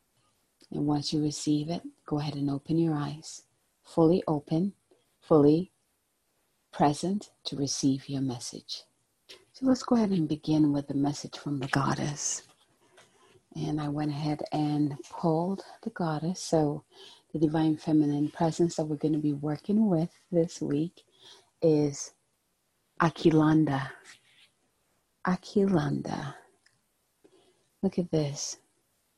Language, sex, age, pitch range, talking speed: English, female, 40-59, 145-175 Hz, 120 wpm